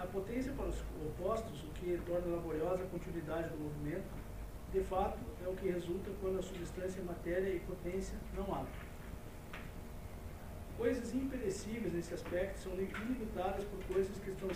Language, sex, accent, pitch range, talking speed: Portuguese, male, Brazilian, 160-195 Hz, 155 wpm